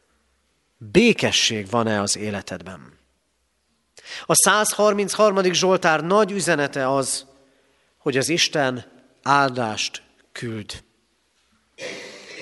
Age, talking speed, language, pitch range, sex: 40-59, 70 wpm, Hungarian, 135-195 Hz, male